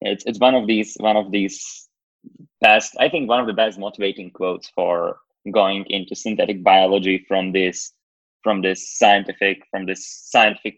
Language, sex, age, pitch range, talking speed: Slovak, male, 20-39, 100-125 Hz, 165 wpm